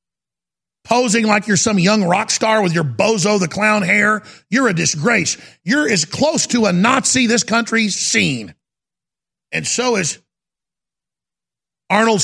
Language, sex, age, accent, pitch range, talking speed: English, male, 50-69, American, 175-235 Hz, 140 wpm